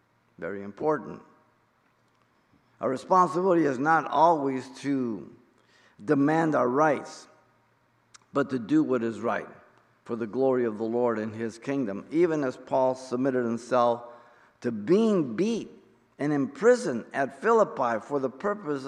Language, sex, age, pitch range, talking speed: English, male, 50-69, 120-160 Hz, 130 wpm